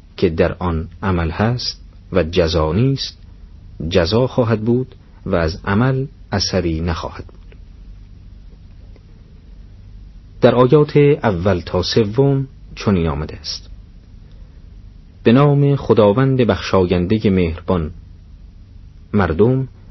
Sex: male